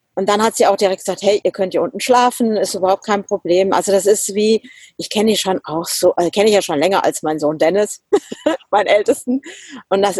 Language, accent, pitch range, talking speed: German, German, 175-210 Hz, 240 wpm